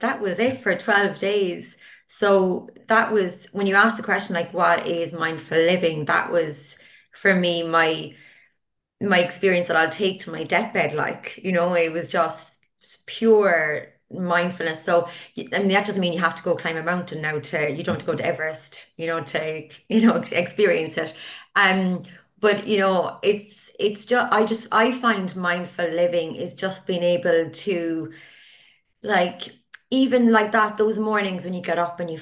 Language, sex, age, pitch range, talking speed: English, female, 30-49, 165-200 Hz, 185 wpm